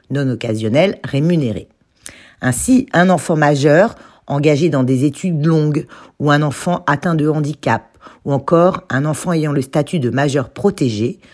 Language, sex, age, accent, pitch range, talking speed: French, female, 50-69, French, 130-190 Hz, 150 wpm